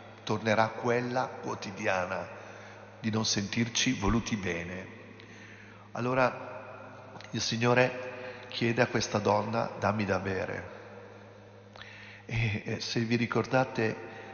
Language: Italian